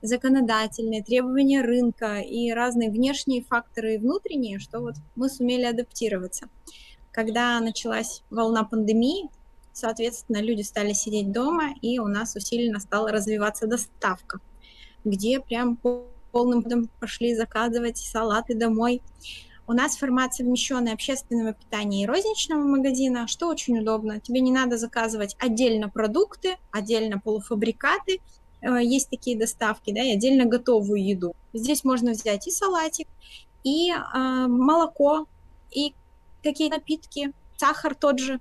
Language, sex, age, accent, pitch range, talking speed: Russian, female, 20-39, native, 225-270 Hz, 125 wpm